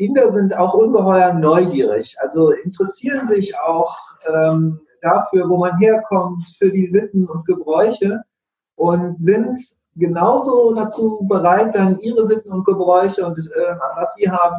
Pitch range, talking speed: 160-215 Hz, 140 wpm